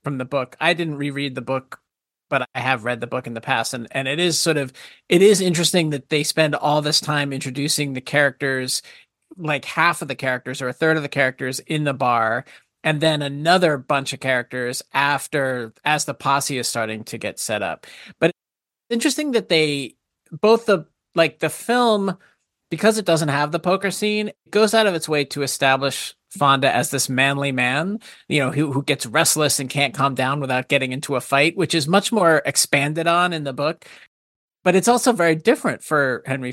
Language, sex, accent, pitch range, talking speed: English, male, American, 130-165 Hz, 205 wpm